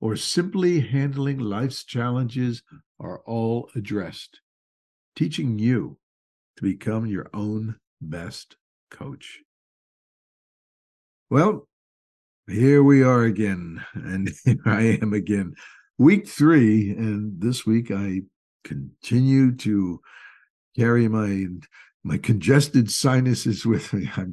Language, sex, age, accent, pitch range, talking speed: English, male, 60-79, American, 100-140 Hz, 105 wpm